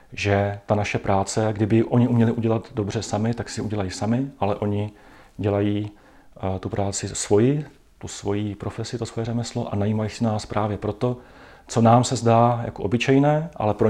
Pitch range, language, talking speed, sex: 105-120 Hz, Czech, 175 wpm, male